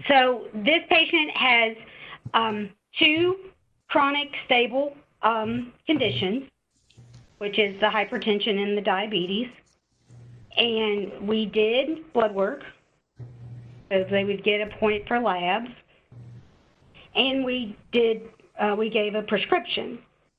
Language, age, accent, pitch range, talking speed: English, 50-69, American, 210-255 Hz, 110 wpm